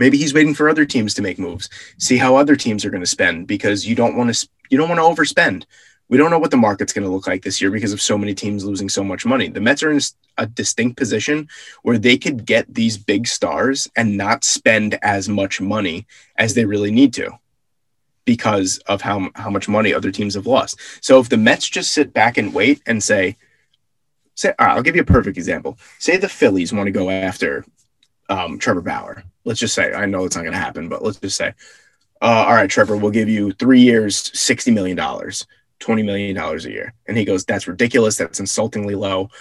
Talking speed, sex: 225 wpm, male